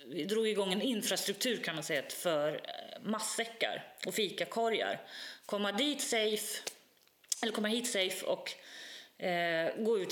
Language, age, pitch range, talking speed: Swedish, 30-49, 180-230 Hz, 135 wpm